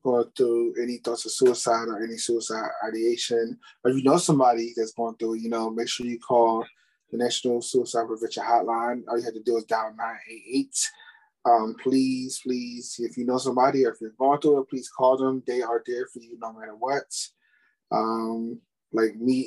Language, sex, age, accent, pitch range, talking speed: English, male, 20-39, American, 115-135 Hz, 195 wpm